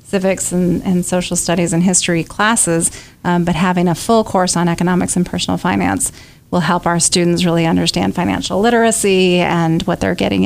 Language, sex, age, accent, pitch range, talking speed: English, female, 30-49, American, 180-210 Hz, 180 wpm